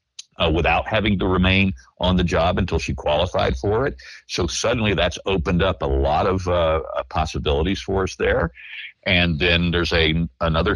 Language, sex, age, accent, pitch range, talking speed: English, male, 50-69, American, 80-105 Hz, 165 wpm